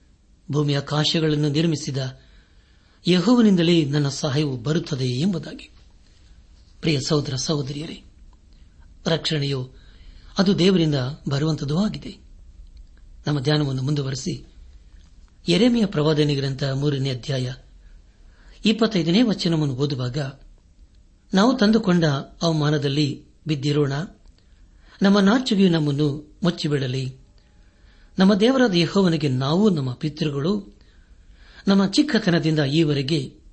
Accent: native